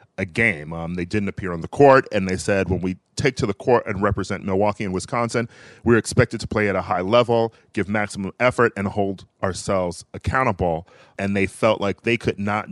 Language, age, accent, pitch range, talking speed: English, 30-49, American, 90-110 Hz, 210 wpm